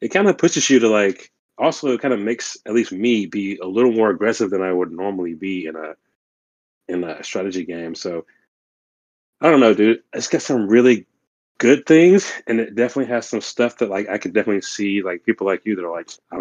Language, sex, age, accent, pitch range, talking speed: English, male, 30-49, American, 90-120 Hz, 225 wpm